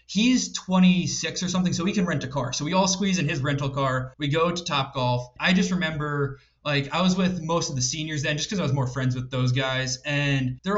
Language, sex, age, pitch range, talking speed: English, male, 20-39, 135-180 Hz, 255 wpm